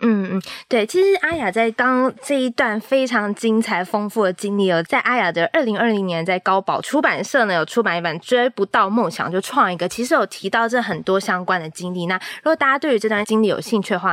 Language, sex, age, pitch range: Chinese, female, 20-39, 180-245 Hz